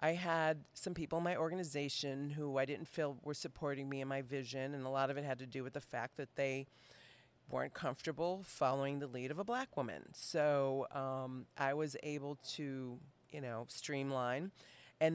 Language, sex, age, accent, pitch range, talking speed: English, female, 40-59, American, 135-155 Hz, 195 wpm